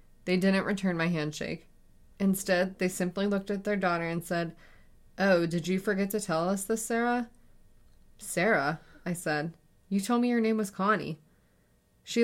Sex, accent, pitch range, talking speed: female, American, 160-200 Hz, 165 wpm